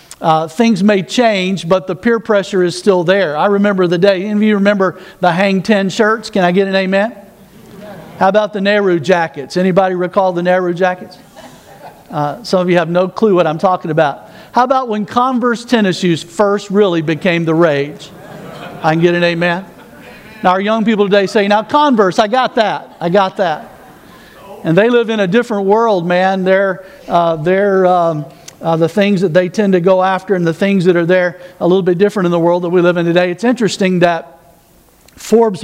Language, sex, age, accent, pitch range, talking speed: English, male, 50-69, American, 170-200 Hz, 205 wpm